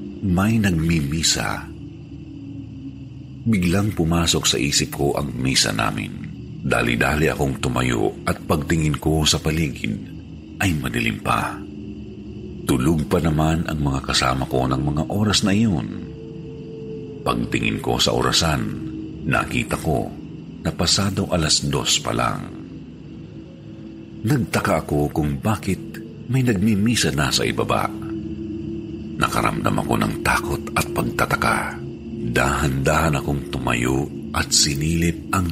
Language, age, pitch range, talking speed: Filipino, 50-69, 75-105 Hz, 115 wpm